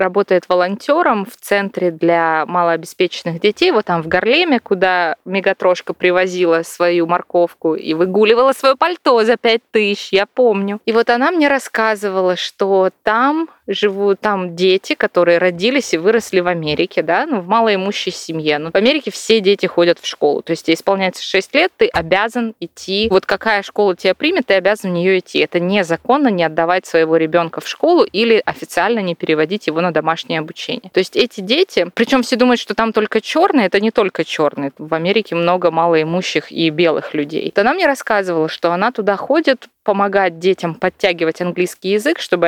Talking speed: 175 wpm